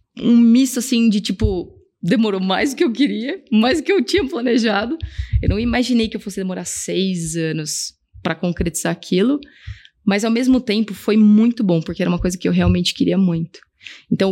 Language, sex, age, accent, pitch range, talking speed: Portuguese, female, 20-39, Brazilian, 185-240 Hz, 195 wpm